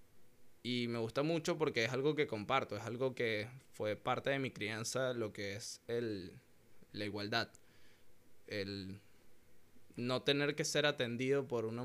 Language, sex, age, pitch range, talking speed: Spanish, male, 20-39, 110-145 Hz, 155 wpm